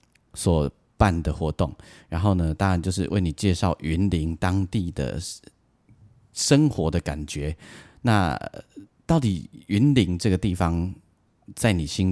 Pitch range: 80-105 Hz